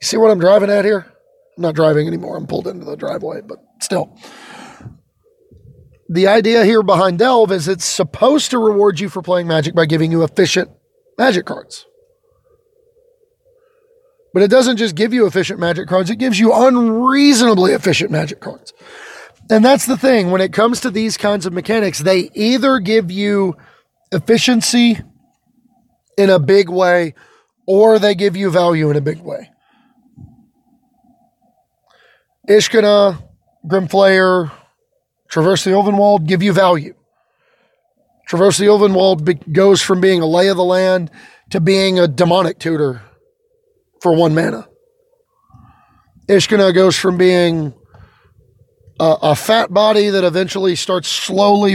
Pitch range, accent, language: 180-245 Hz, American, English